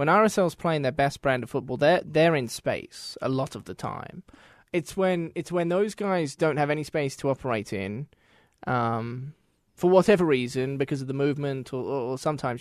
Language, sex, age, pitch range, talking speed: English, male, 20-39, 125-170 Hz, 195 wpm